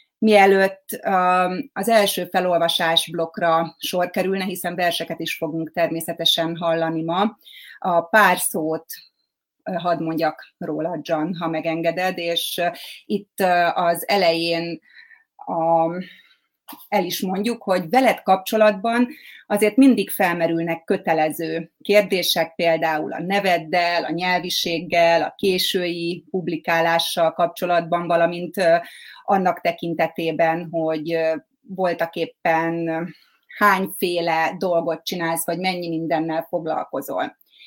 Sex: female